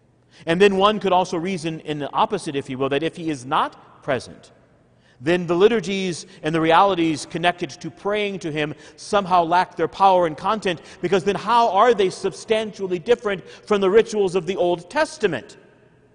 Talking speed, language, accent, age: 180 wpm, English, American, 40-59